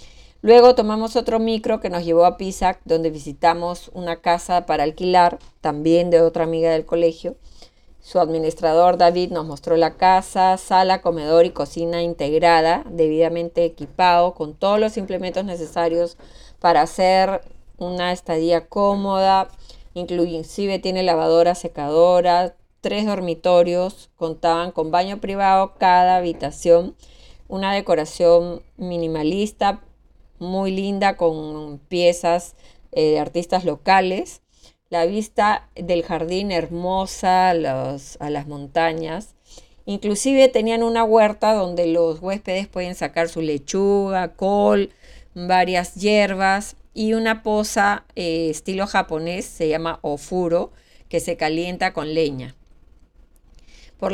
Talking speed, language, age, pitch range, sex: 115 wpm, Spanish, 30-49, 165-190 Hz, female